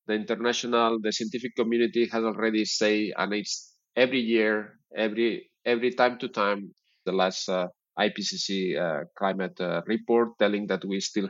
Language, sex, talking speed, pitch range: English, male, 155 wpm, 105-130 Hz